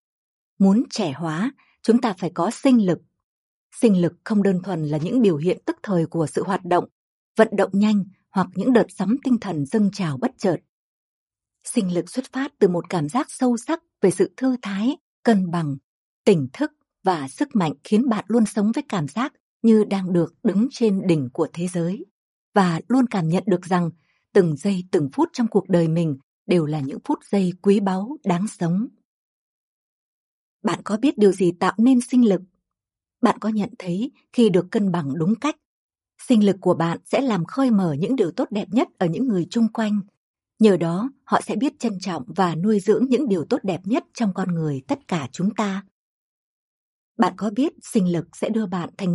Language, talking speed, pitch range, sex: Vietnamese, 200 wpm, 175-235 Hz, female